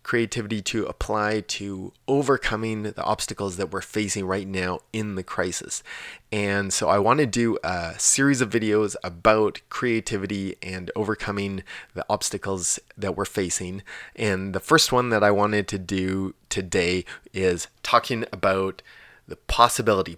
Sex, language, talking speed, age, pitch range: male, English, 145 wpm, 20-39, 95-110 Hz